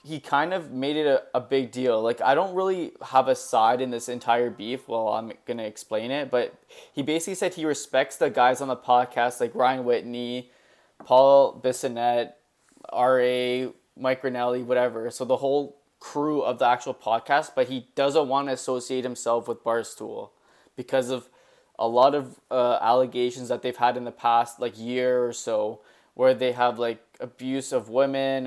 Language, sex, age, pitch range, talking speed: English, male, 20-39, 125-140 Hz, 185 wpm